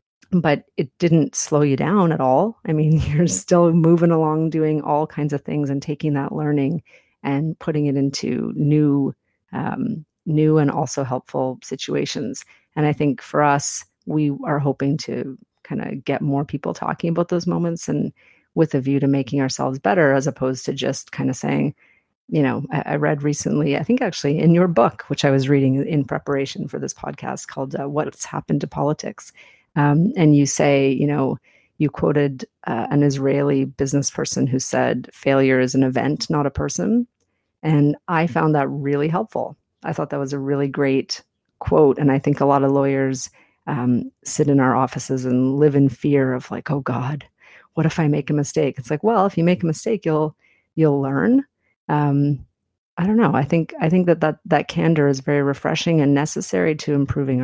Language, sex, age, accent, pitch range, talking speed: English, female, 40-59, American, 140-160 Hz, 195 wpm